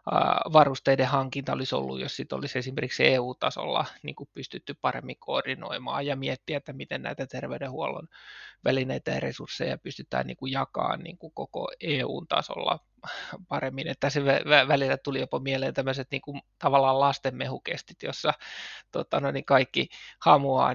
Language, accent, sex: Finnish, native, male